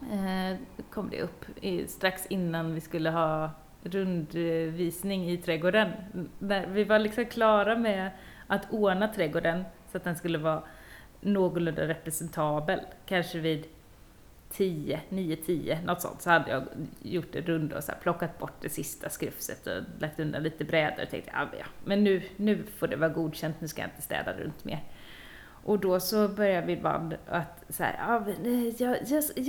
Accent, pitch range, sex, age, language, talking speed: native, 165-220 Hz, female, 30-49, Swedish, 165 wpm